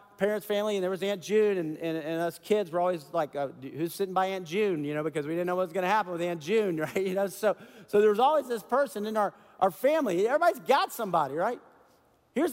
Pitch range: 190-290 Hz